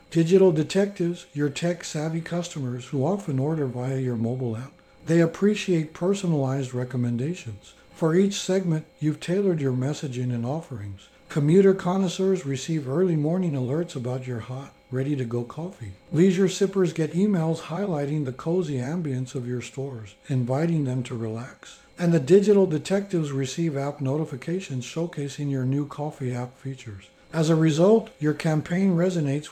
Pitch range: 130-175 Hz